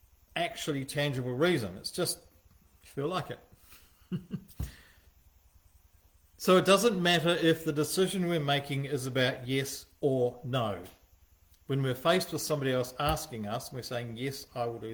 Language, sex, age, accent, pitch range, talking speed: English, male, 50-69, Australian, 105-155 Hz, 155 wpm